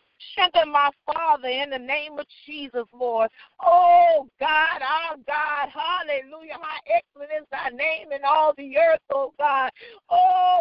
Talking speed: 145 wpm